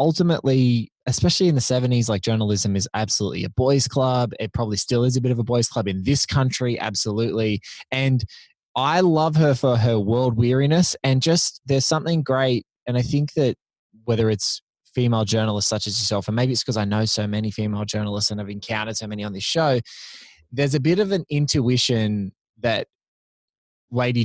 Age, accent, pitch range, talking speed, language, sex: 20-39, Australian, 105-130 Hz, 190 wpm, English, male